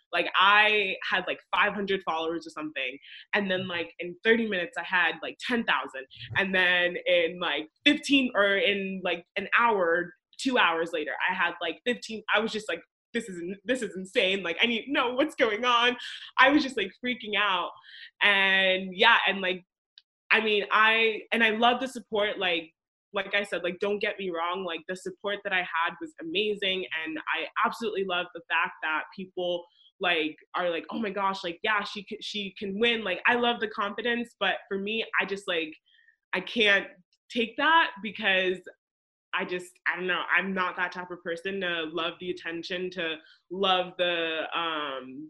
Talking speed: 190 wpm